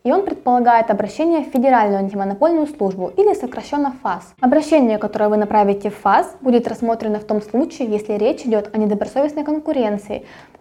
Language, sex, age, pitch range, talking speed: Russian, female, 20-39, 210-285 Hz, 165 wpm